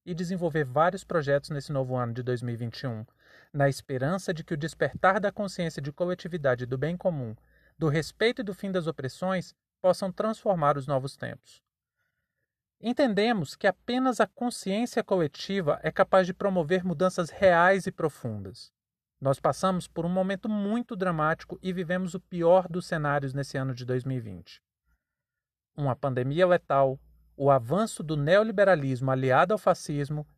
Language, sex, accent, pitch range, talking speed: Portuguese, male, Brazilian, 140-190 Hz, 150 wpm